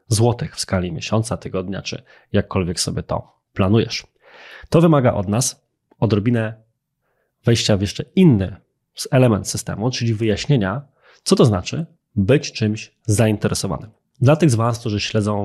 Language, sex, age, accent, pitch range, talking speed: Polish, male, 20-39, native, 100-135 Hz, 135 wpm